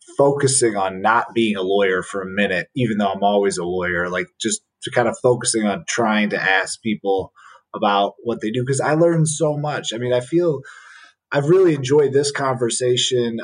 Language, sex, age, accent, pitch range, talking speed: English, male, 30-49, American, 100-125 Hz, 195 wpm